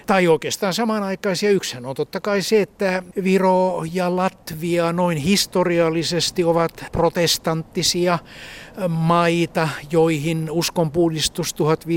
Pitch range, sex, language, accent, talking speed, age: 155-185 Hz, male, Finnish, native, 95 wpm, 60-79